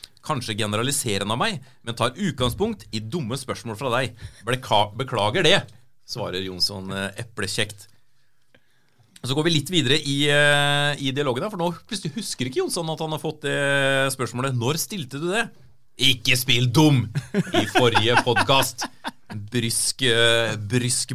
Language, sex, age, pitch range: English, male, 30-49, 120-155 Hz